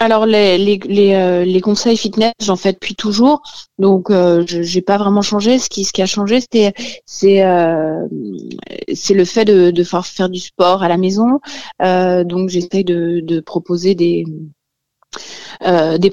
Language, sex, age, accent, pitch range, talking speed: French, female, 30-49, French, 170-205 Hz, 175 wpm